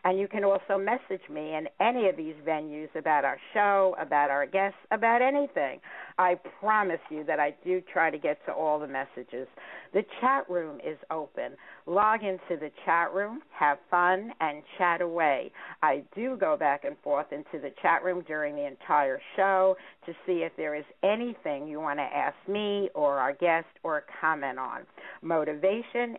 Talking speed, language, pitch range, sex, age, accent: 180 wpm, English, 155-195 Hz, female, 50-69, American